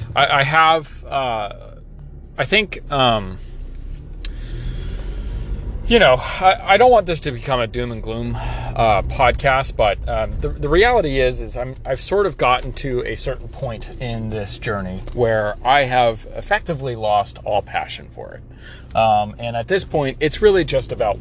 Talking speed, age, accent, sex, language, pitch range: 160 wpm, 30-49, American, male, English, 105-130 Hz